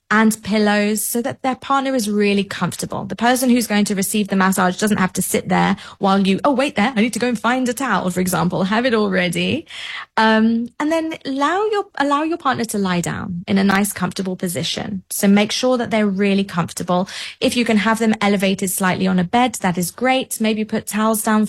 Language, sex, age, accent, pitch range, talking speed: English, female, 20-39, British, 190-235 Hz, 225 wpm